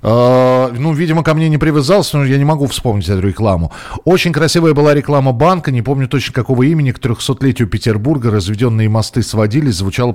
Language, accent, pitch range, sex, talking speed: Russian, native, 115-170 Hz, male, 185 wpm